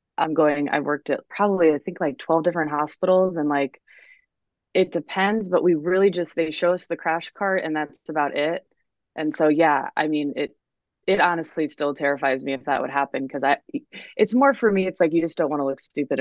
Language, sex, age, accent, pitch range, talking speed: English, female, 20-39, American, 145-170 Hz, 220 wpm